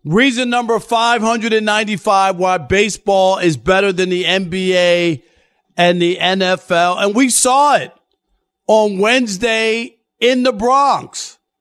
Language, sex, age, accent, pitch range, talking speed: English, male, 40-59, American, 180-220 Hz, 115 wpm